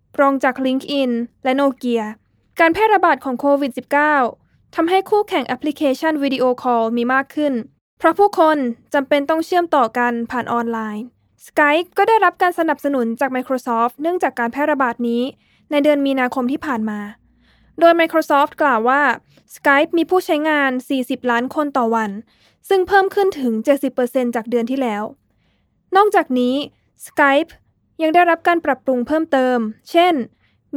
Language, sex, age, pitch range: Thai, female, 20-39, 250-315 Hz